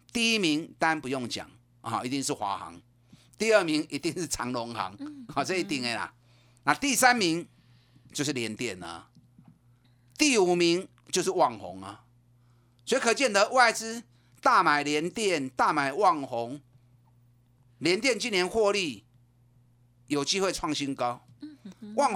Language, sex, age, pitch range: Chinese, male, 30-49, 120-195 Hz